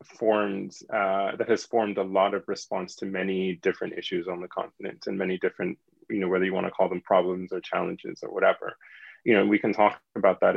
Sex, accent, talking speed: male, American, 220 wpm